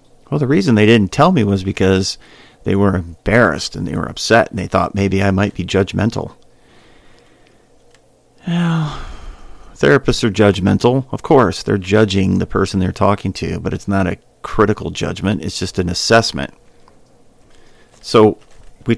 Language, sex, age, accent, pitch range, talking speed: English, male, 40-59, American, 95-120 Hz, 155 wpm